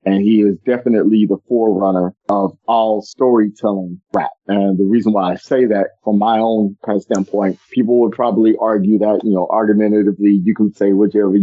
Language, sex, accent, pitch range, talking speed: English, male, American, 100-110 Hz, 185 wpm